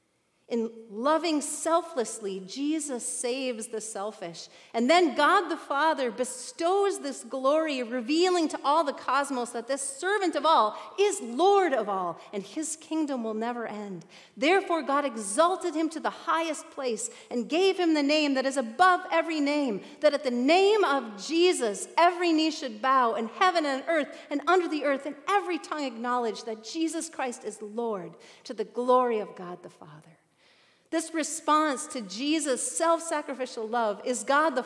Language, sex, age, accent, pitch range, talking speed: English, female, 40-59, American, 235-330 Hz, 165 wpm